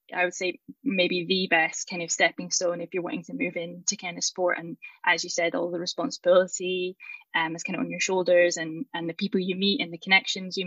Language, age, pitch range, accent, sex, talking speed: English, 10-29, 175-205 Hz, British, female, 240 wpm